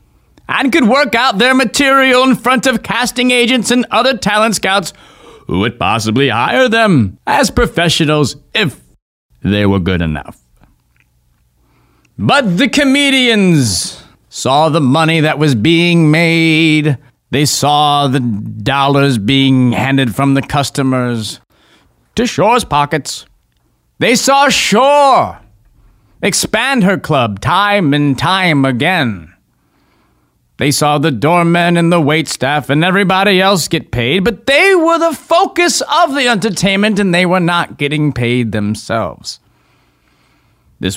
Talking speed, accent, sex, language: 125 wpm, American, male, English